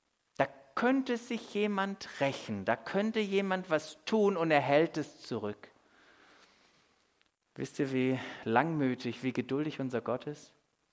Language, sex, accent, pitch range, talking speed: German, male, German, 120-155 Hz, 125 wpm